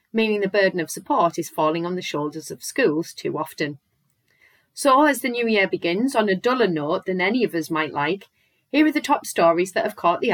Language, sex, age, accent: English, female, 30-49, British